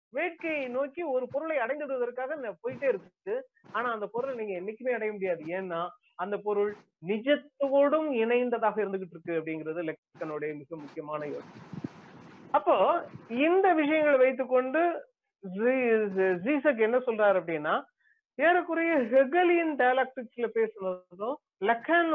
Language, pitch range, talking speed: Tamil, 190-280 Hz, 70 wpm